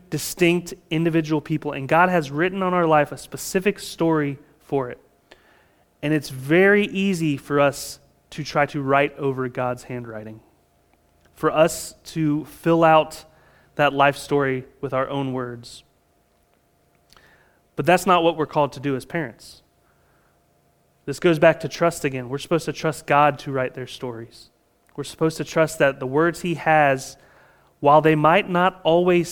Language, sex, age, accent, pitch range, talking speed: English, male, 30-49, American, 135-165 Hz, 160 wpm